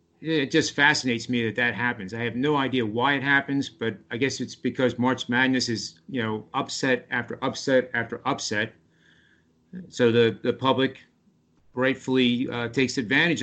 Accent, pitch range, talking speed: American, 115-135 Hz, 165 wpm